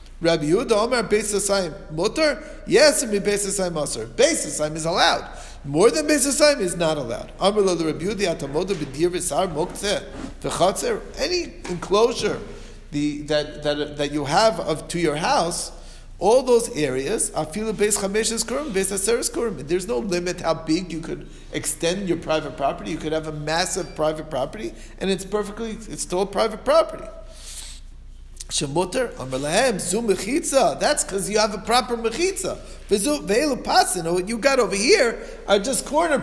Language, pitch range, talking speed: English, 155-215 Hz, 140 wpm